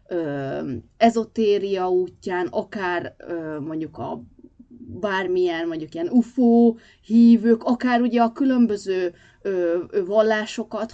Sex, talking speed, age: female, 80 wpm, 20-39